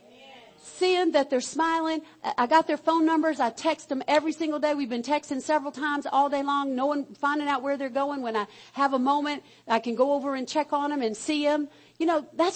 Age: 50-69